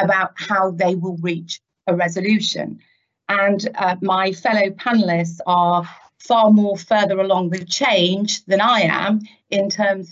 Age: 40-59